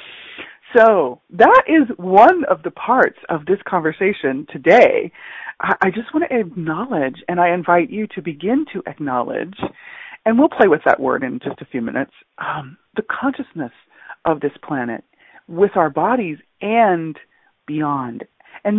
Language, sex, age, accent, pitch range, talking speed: English, female, 40-59, American, 145-205 Hz, 150 wpm